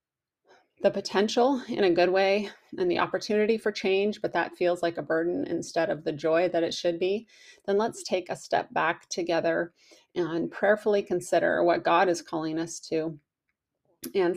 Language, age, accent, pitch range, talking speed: English, 30-49, American, 165-195 Hz, 175 wpm